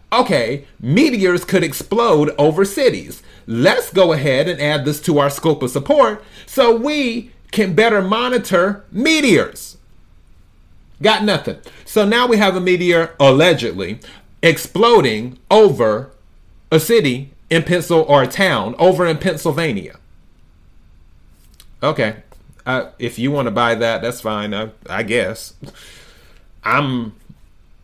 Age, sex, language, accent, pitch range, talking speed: 30-49, male, English, American, 120-180 Hz, 125 wpm